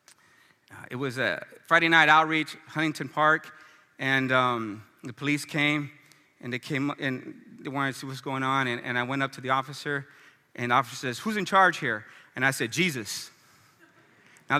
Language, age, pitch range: English, 30-49, 130-165 Hz